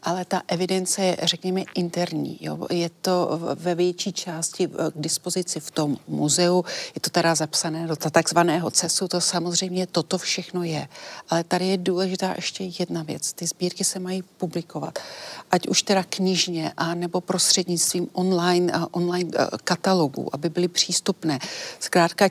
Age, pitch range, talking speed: 40-59, 165-185 Hz, 150 wpm